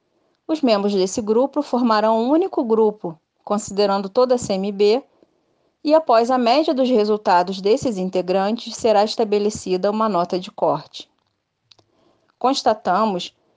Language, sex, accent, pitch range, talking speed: Portuguese, female, Brazilian, 195-245 Hz, 120 wpm